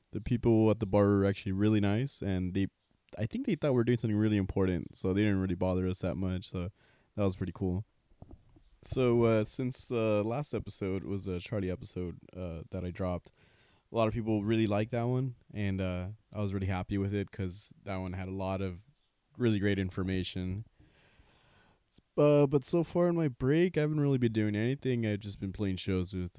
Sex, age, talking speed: male, 20-39, 210 wpm